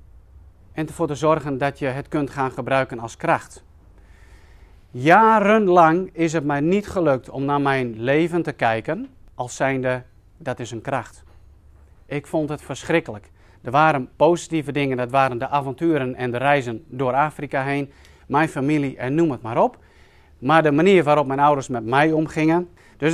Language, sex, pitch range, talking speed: Dutch, male, 115-160 Hz, 170 wpm